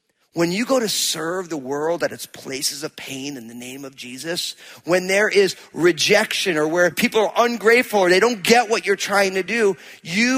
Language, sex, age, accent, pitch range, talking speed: English, male, 40-59, American, 160-220 Hz, 210 wpm